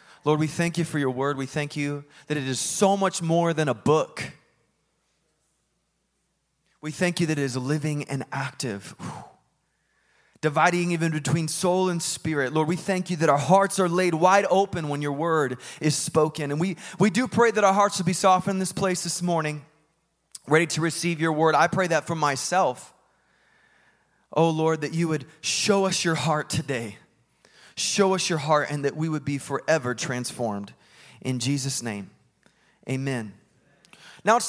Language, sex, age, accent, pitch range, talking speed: English, male, 20-39, American, 140-175 Hz, 180 wpm